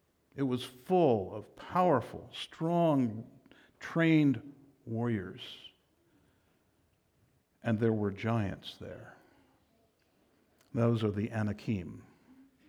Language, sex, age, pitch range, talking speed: English, male, 60-79, 125-170 Hz, 80 wpm